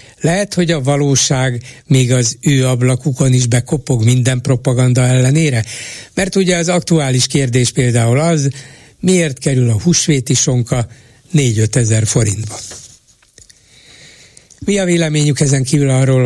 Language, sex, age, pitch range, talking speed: Hungarian, male, 60-79, 120-150 Hz, 120 wpm